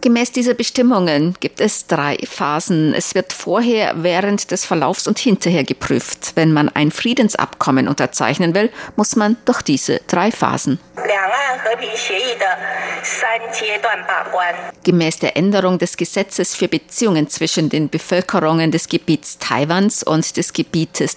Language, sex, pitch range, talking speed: German, female, 155-200 Hz, 125 wpm